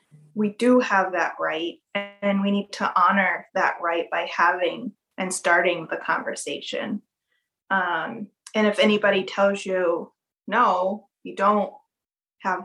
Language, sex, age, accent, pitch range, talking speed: English, female, 20-39, American, 190-215 Hz, 135 wpm